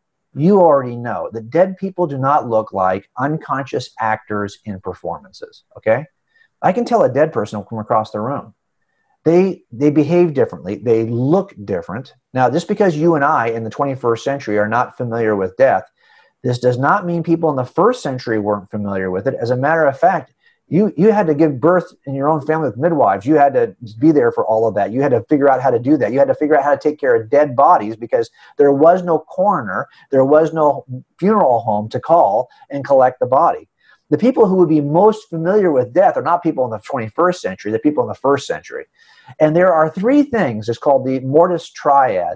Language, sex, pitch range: English, male, 115-175 Hz